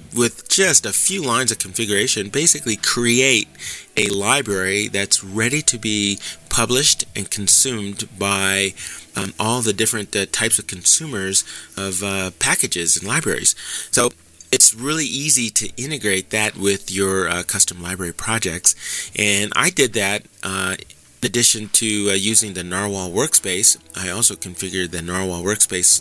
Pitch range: 95-115 Hz